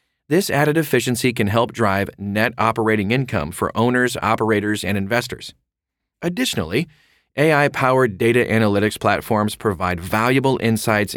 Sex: male